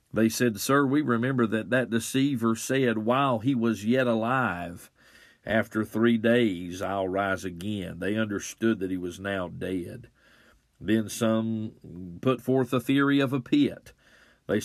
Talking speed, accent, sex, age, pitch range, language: 150 wpm, American, male, 50-69, 105-130 Hz, English